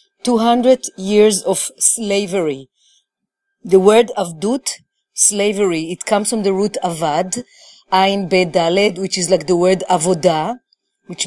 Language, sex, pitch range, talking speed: English, female, 190-240 Hz, 120 wpm